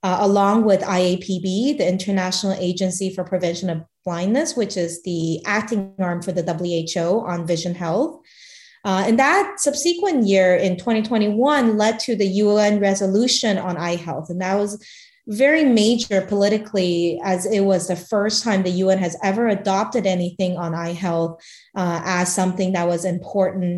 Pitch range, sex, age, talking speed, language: 180-210 Hz, female, 20-39, 160 wpm, English